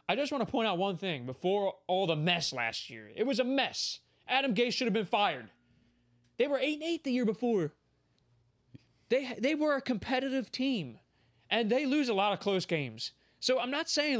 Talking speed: 205 wpm